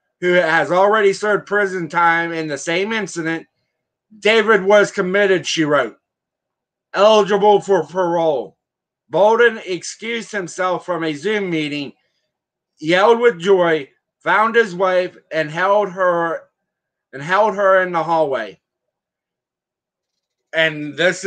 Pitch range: 165-200 Hz